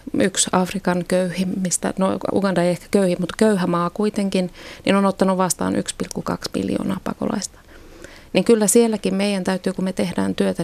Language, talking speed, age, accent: Finnish, 165 wpm, 30-49, native